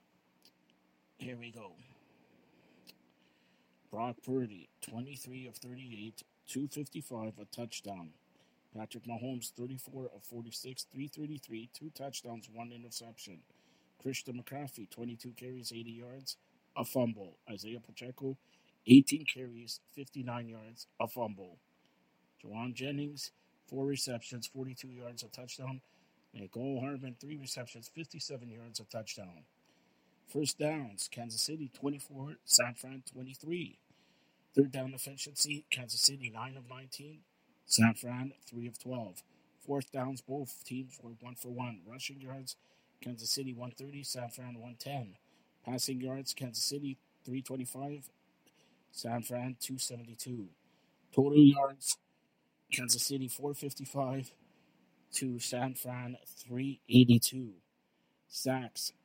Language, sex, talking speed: English, male, 110 wpm